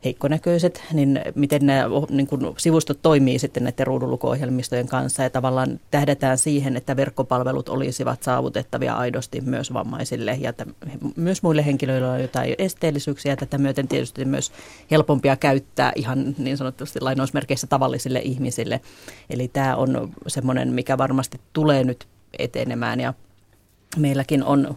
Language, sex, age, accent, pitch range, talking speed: Finnish, female, 30-49, native, 130-145 Hz, 135 wpm